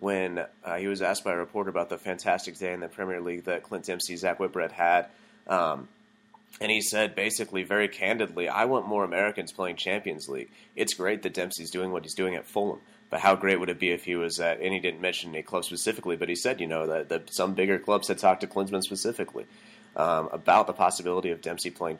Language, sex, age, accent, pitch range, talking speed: English, male, 30-49, American, 85-105 Hz, 230 wpm